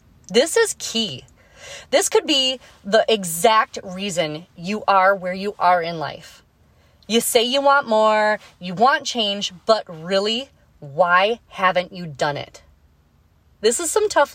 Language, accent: English, American